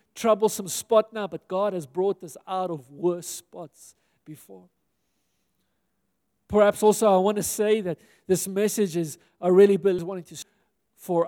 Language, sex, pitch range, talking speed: English, male, 180-210 Hz, 150 wpm